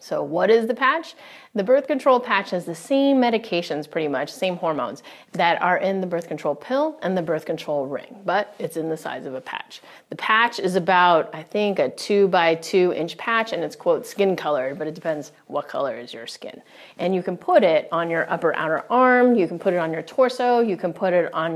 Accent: American